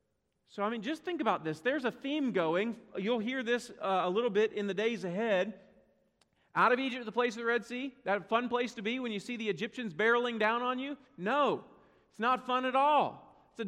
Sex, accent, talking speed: male, American, 235 wpm